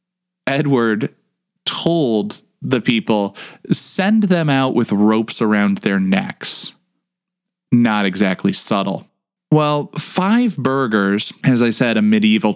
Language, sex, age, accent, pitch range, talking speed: English, male, 20-39, American, 125-195 Hz, 110 wpm